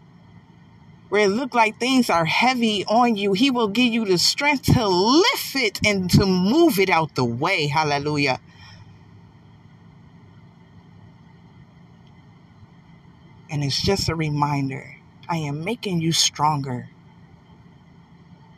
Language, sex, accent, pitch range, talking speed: English, female, American, 150-195 Hz, 115 wpm